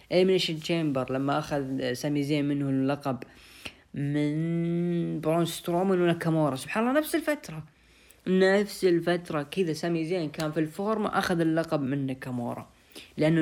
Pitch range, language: 145-180 Hz, Arabic